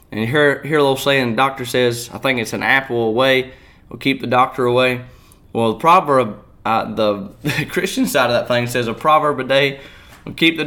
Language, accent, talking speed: English, American, 225 wpm